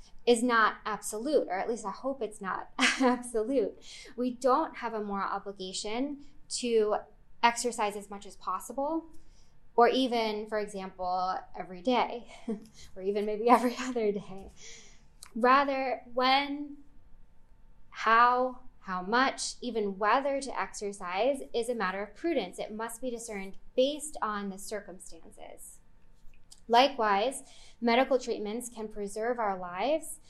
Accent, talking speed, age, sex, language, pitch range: American, 125 wpm, 20-39, female, English, 195-250 Hz